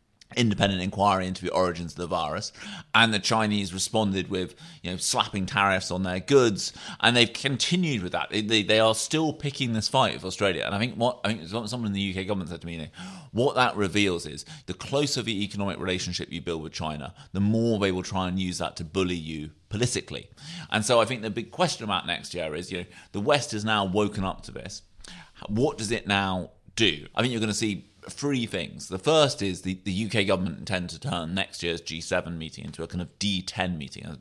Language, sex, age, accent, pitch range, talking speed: English, male, 30-49, British, 90-110 Hz, 230 wpm